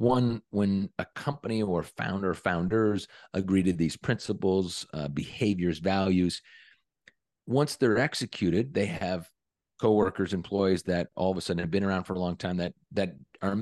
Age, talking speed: 50-69, 160 wpm